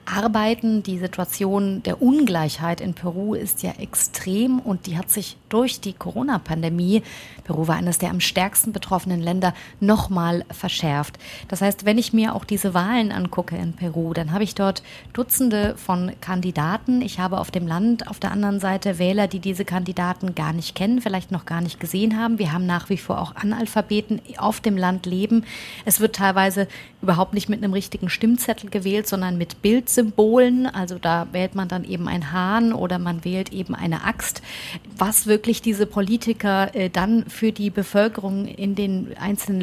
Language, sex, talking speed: German, female, 175 wpm